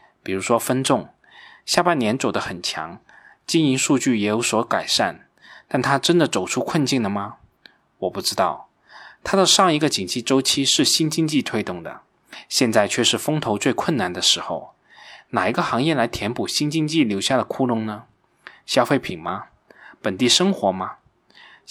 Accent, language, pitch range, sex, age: native, Chinese, 105-145 Hz, male, 20-39